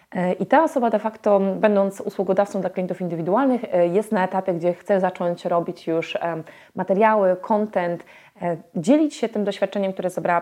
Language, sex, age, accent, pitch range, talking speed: Polish, female, 20-39, native, 175-215 Hz, 150 wpm